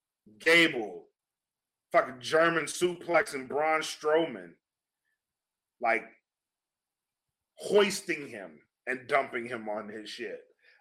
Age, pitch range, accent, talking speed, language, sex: 30-49, 155-185 Hz, American, 90 wpm, English, male